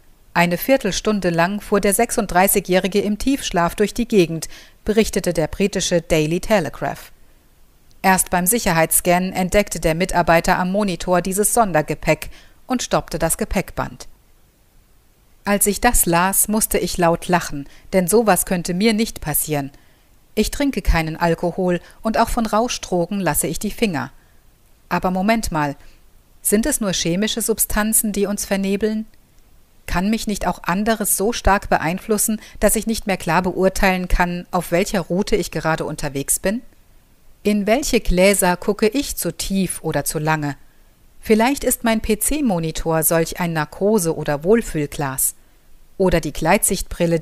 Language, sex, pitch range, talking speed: German, female, 170-215 Hz, 140 wpm